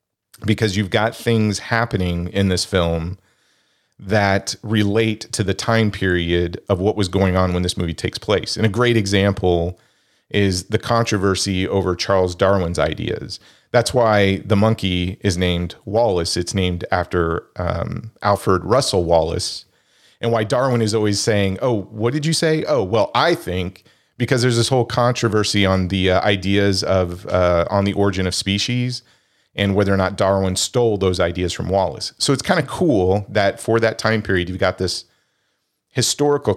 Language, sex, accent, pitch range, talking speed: English, male, American, 95-115 Hz, 170 wpm